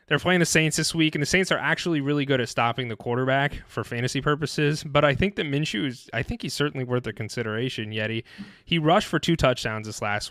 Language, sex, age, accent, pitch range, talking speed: English, male, 20-39, American, 115-135 Hz, 240 wpm